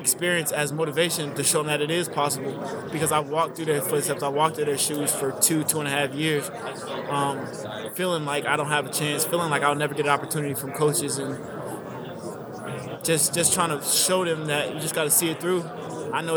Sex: male